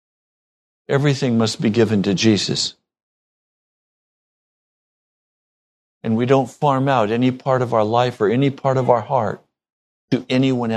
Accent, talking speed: American, 135 wpm